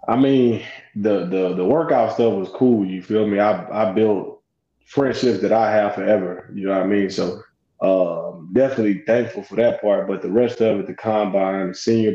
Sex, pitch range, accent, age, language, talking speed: male, 100-120 Hz, American, 20-39, English, 200 wpm